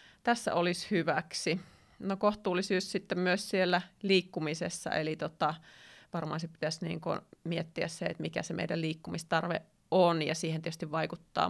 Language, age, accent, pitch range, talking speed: Finnish, 30-49, native, 160-180 Hz, 140 wpm